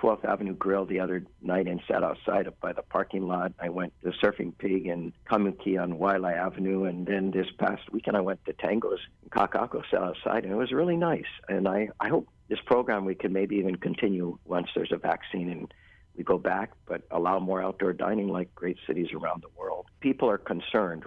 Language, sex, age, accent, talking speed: English, male, 50-69, American, 210 wpm